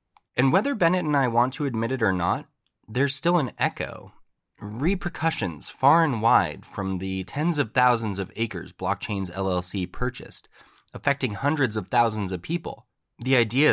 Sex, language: male, English